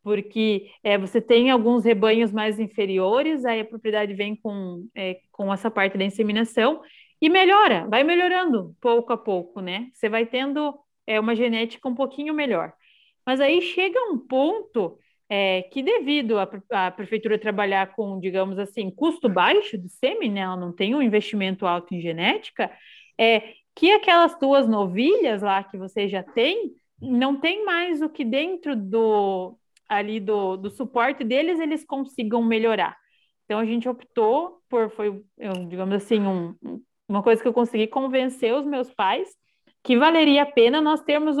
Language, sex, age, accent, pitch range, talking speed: Portuguese, female, 30-49, Brazilian, 205-280 Hz, 165 wpm